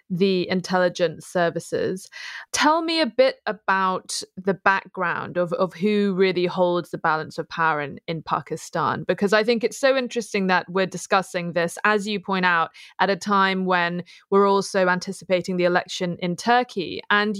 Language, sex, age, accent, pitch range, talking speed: English, female, 20-39, British, 180-230 Hz, 165 wpm